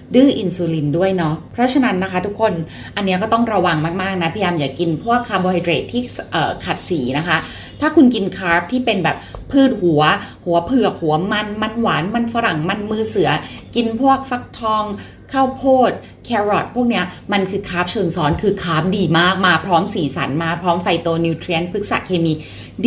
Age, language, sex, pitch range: 20-39, Thai, female, 165-235 Hz